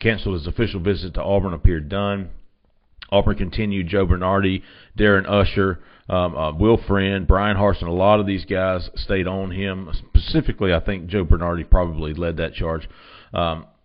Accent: American